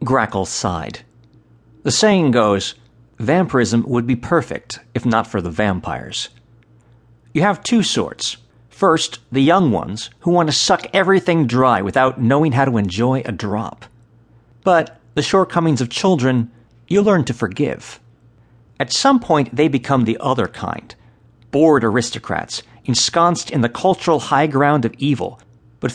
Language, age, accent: English, 50-69, American